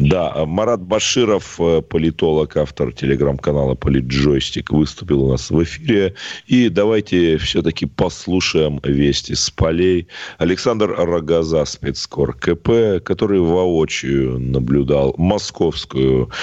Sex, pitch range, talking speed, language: male, 70-95 Hz, 95 wpm, Russian